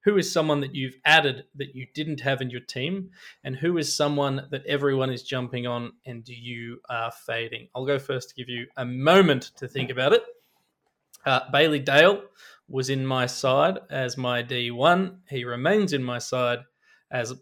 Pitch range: 130-150 Hz